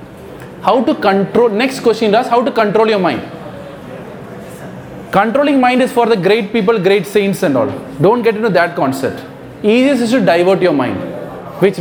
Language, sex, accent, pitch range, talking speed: English, male, Indian, 160-230 Hz, 175 wpm